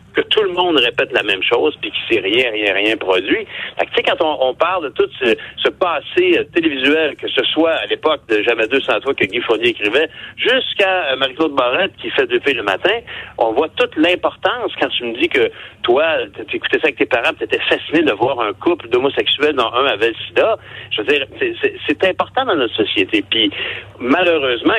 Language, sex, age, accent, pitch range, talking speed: French, male, 60-79, French, 310-420 Hz, 220 wpm